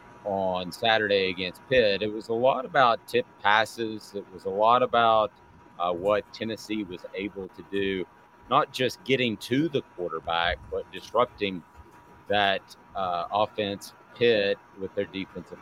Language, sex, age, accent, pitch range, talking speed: English, male, 30-49, American, 95-120 Hz, 145 wpm